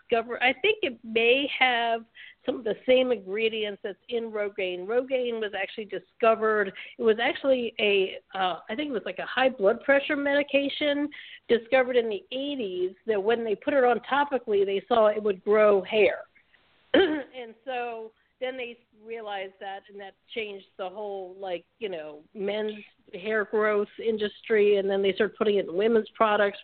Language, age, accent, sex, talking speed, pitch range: English, 50-69, American, female, 170 wpm, 195-235 Hz